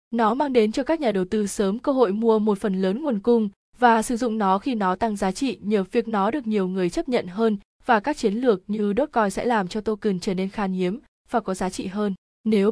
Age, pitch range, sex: 20-39, 195-230 Hz, female